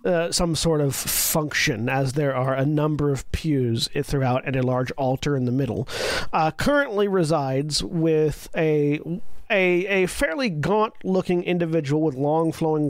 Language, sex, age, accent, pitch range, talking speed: English, male, 40-59, American, 145-180 Hz, 160 wpm